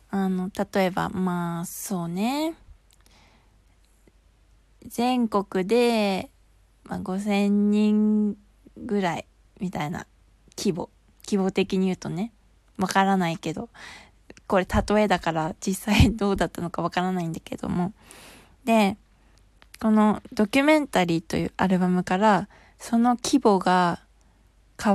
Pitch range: 185-230 Hz